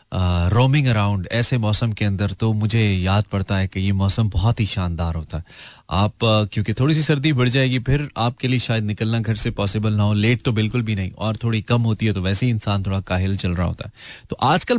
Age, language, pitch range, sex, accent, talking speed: 30-49, Hindi, 95-125 Hz, male, native, 235 wpm